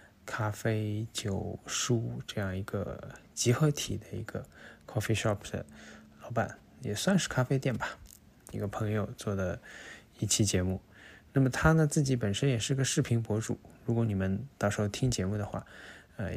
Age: 20-39